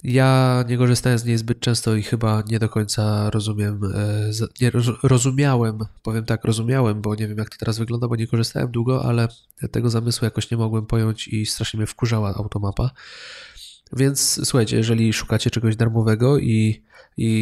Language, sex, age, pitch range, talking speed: Polish, male, 20-39, 110-125 Hz, 170 wpm